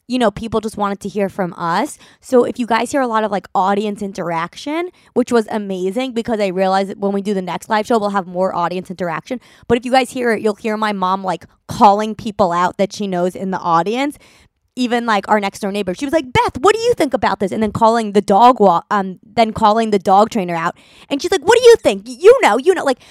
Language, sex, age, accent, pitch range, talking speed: English, female, 20-39, American, 185-230 Hz, 255 wpm